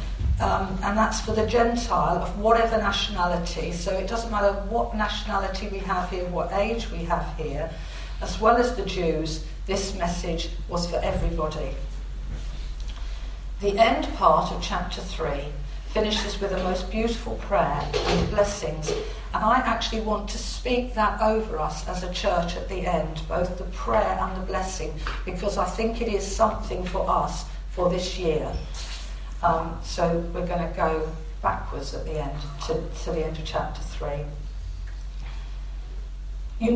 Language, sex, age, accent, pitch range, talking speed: English, female, 50-69, British, 155-210 Hz, 160 wpm